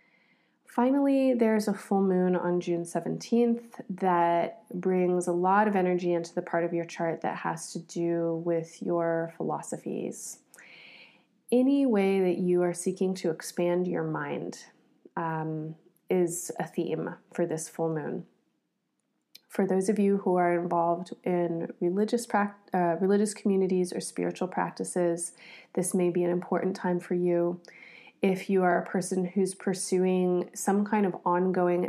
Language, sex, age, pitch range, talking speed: English, female, 20-39, 170-200 Hz, 150 wpm